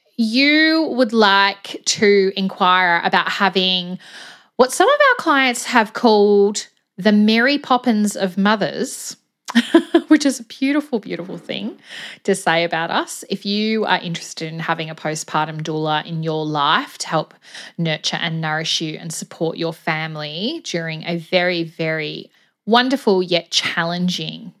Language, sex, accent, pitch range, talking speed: English, female, Australian, 180-255 Hz, 140 wpm